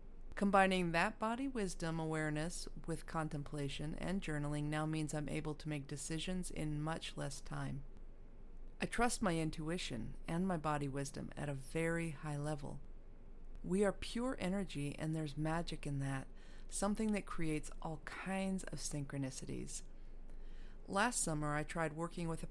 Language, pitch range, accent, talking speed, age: English, 145-185 Hz, American, 150 wpm, 30-49